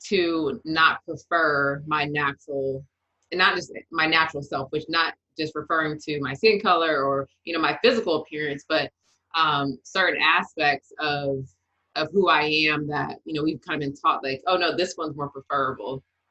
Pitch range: 140-160 Hz